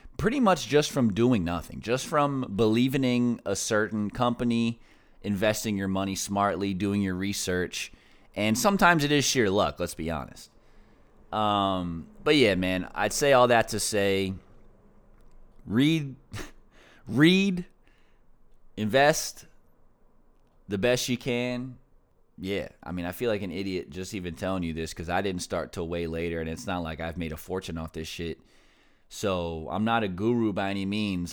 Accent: American